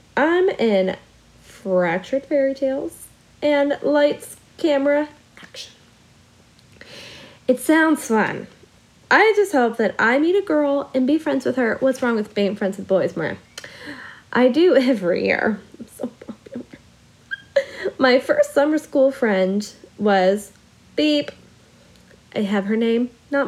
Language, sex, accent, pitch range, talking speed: English, female, American, 195-280 Hz, 130 wpm